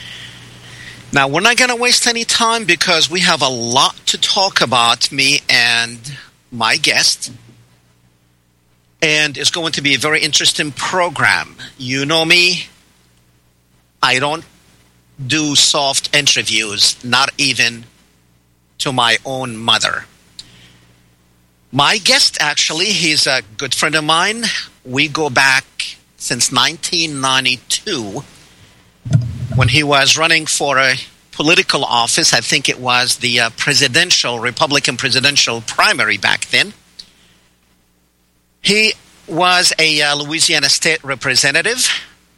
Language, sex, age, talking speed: English, male, 50-69, 115 wpm